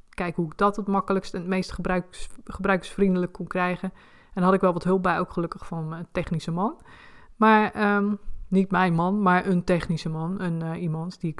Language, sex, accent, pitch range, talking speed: Dutch, female, Dutch, 180-215 Hz, 215 wpm